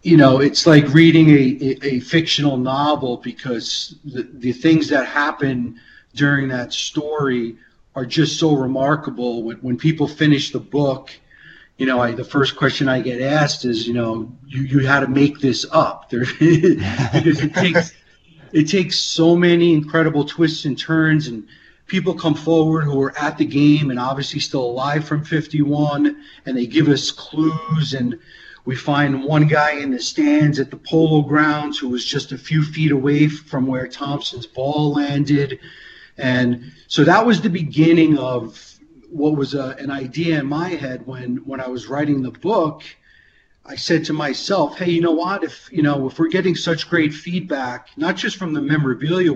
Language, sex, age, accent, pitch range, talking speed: English, male, 40-59, American, 130-155 Hz, 175 wpm